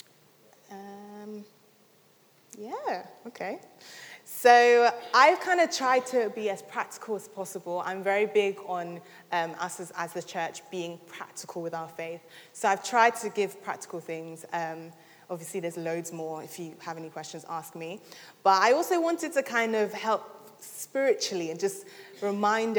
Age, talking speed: 20-39, 160 wpm